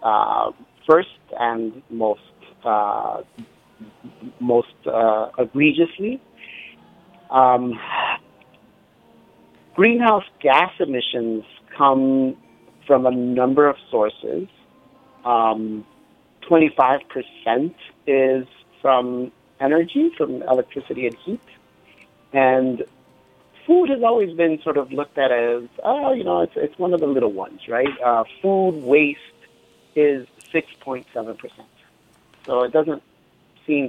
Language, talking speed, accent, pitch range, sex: English, 100 wpm, American, 120-165 Hz, male